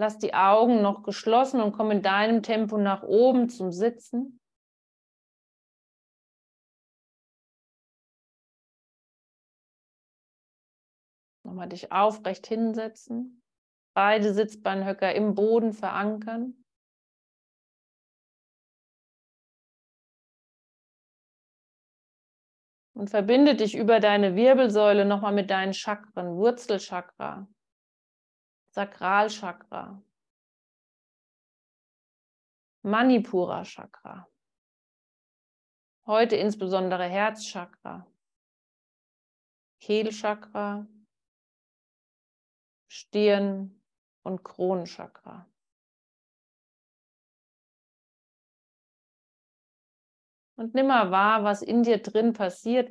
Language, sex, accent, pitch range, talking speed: German, male, German, 195-230 Hz, 60 wpm